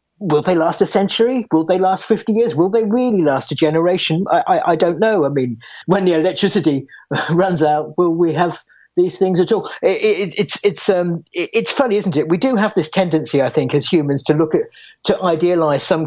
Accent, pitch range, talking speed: British, 150-180 Hz, 225 wpm